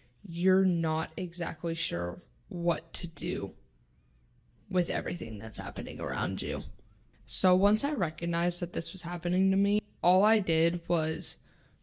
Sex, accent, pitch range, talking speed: female, American, 165-180 Hz, 135 wpm